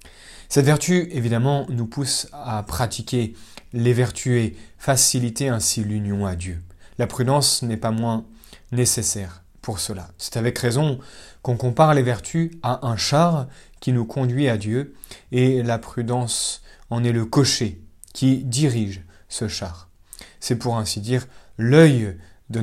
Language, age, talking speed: French, 30-49, 145 wpm